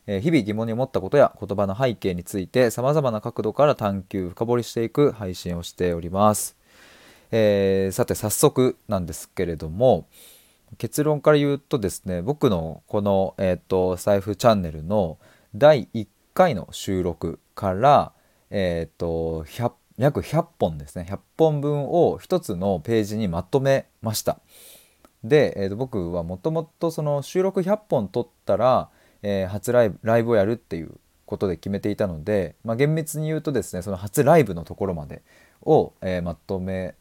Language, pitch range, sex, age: Japanese, 90-125 Hz, male, 20-39